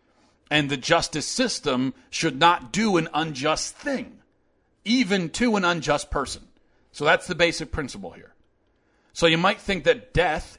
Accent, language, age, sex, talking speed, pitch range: American, English, 40-59, male, 155 wpm, 115-155 Hz